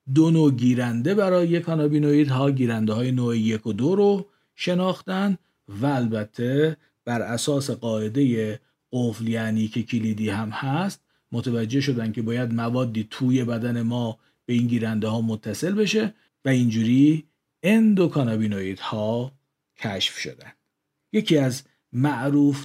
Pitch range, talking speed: 115-150 Hz, 125 wpm